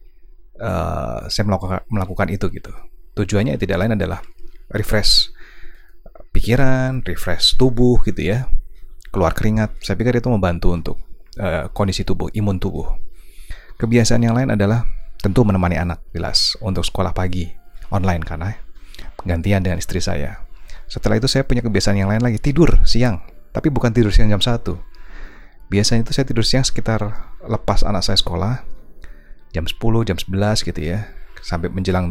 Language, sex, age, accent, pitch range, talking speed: Indonesian, male, 30-49, native, 90-110 Hz, 150 wpm